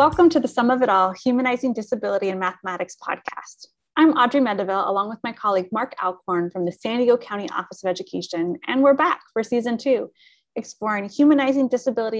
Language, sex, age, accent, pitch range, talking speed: English, female, 30-49, American, 195-265 Hz, 185 wpm